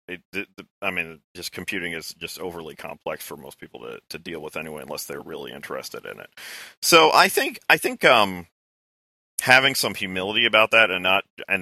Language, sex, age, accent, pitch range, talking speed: English, male, 30-49, American, 85-105 Hz, 195 wpm